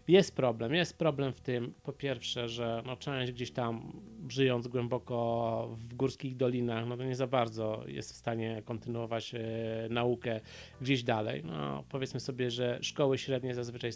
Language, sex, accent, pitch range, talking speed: Polish, male, native, 120-145 Hz, 165 wpm